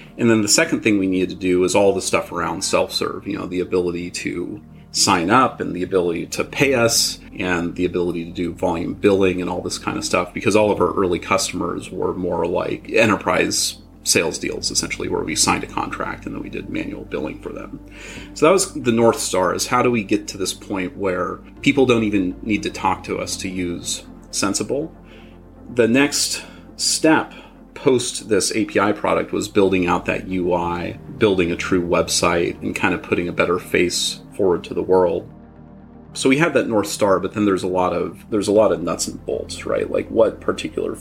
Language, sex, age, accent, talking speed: English, male, 30-49, American, 210 wpm